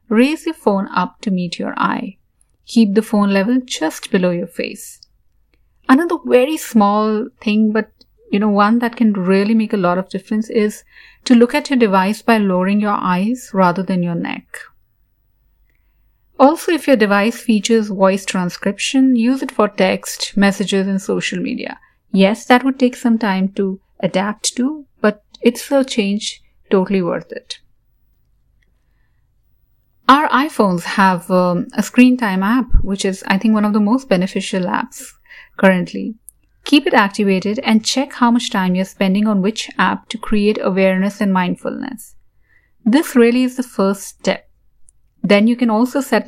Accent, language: Indian, English